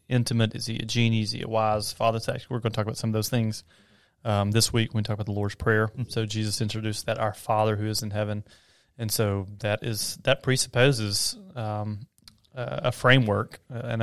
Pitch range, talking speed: 110-125 Hz, 210 wpm